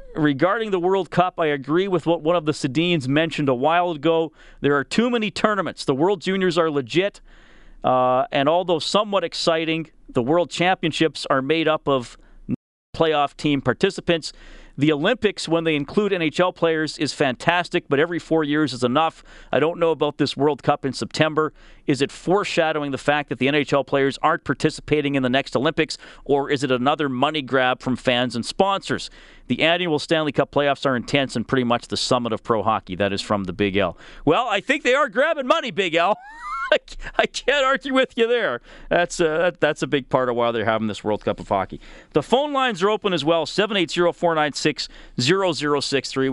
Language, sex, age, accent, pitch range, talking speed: English, male, 40-59, American, 135-175 Hz, 190 wpm